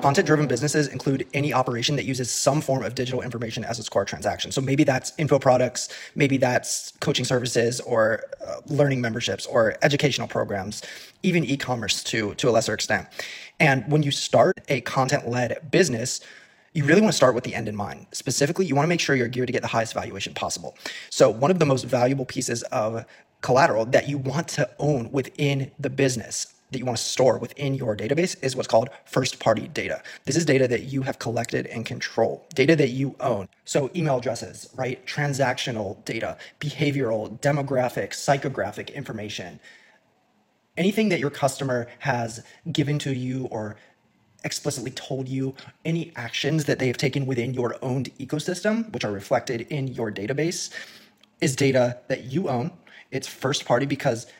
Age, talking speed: 20-39, 175 wpm